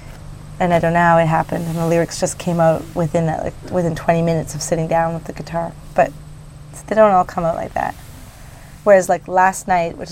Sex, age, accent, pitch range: female, 30-49, American, 165-195 Hz